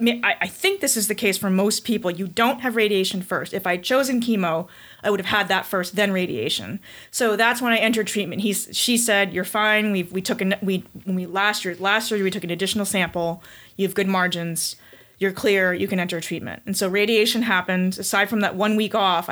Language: English